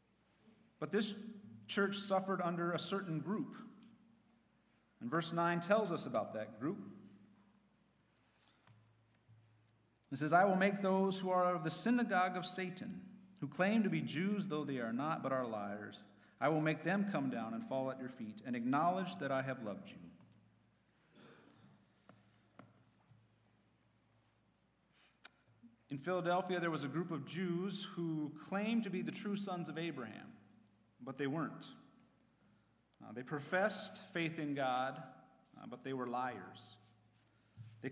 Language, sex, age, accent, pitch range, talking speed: English, male, 40-59, American, 135-195 Hz, 145 wpm